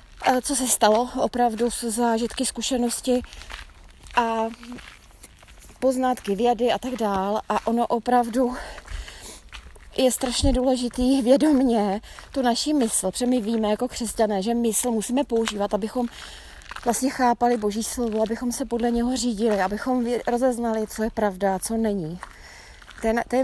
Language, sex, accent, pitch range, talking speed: Czech, female, native, 225-255 Hz, 130 wpm